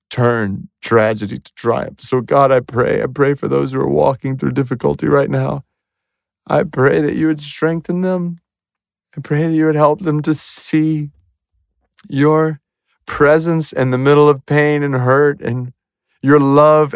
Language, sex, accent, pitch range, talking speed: English, male, American, 115-150 Hz, 165 wpm